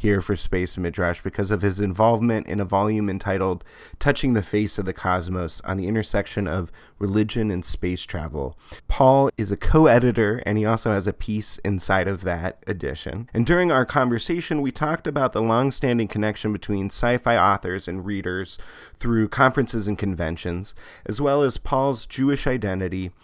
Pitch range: 95-125 Hz